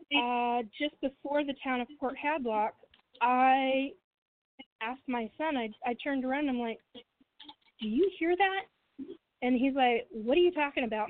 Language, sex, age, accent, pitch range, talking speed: English, female, 40-59, American, 235-295 Hz, 170 wpm